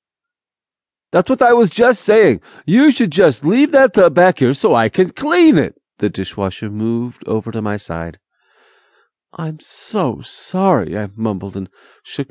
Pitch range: 105-160 Hz